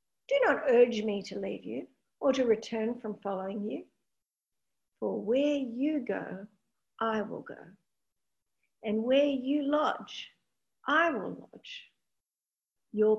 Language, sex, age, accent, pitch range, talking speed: English, female, 50-69, Australian, 210-275 Hz, 125 wpm